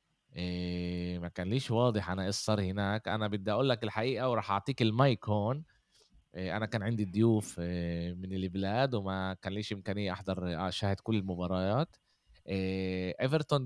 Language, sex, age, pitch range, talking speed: Arabic, male, 20-39, 90-115 Hz, 155 wpm